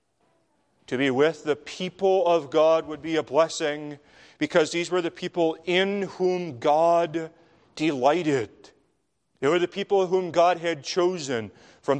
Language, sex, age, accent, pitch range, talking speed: English, male, 40-59, American, 130-165 Hz, 145 wpm